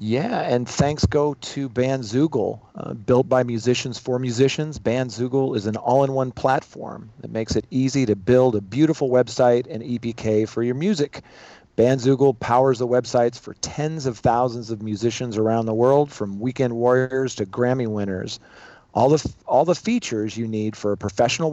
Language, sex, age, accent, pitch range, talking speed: English, male, 40-59, American, 115-135 Hz, 170 wpm